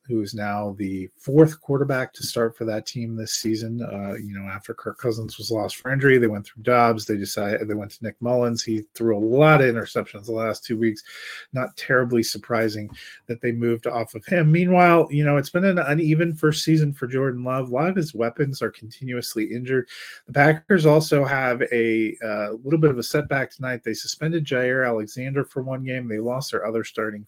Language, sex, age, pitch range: English, male, 30-49, 110-145 Hz